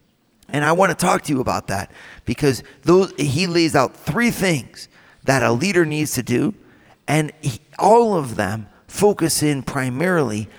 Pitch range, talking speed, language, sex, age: 125-165 Hz, 160 wpm, English, male, 40-59